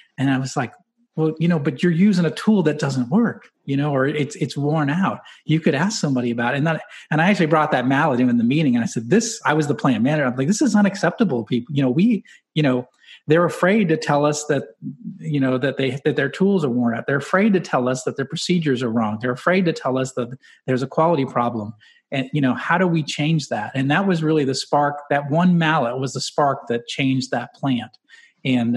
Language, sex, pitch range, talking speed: English, male, 125-160 Hz, 250 wpm